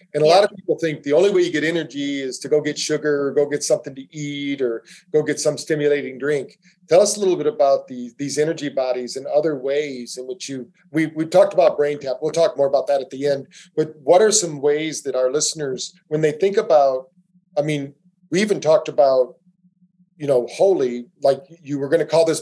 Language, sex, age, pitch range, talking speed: English, male, 40-59, 145-180 Hz, 235 wpm